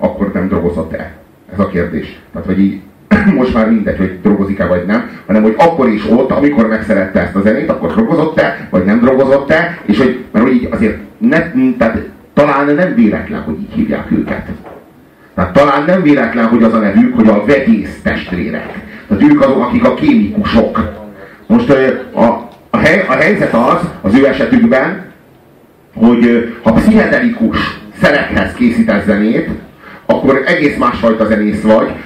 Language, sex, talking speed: Hungarian, male, 160 wpm